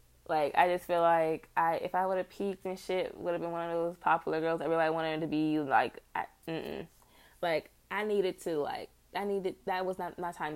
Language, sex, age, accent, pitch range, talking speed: English, female, 20-39, American, 175-225 Hz, 240 wpm